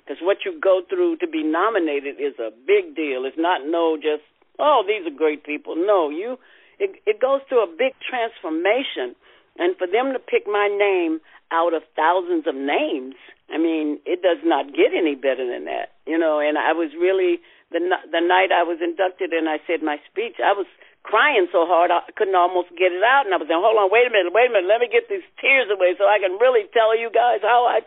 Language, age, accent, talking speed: English, 60-79, American, 230 wpm